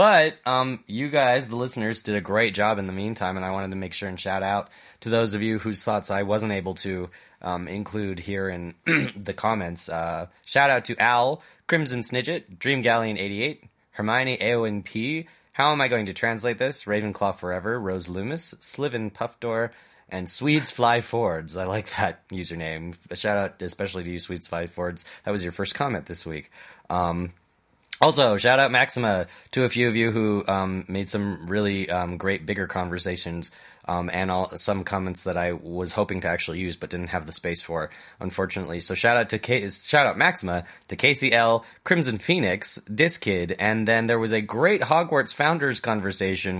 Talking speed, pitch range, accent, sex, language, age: 190 wpm, 90-115 Hz, American, male, English, 20-39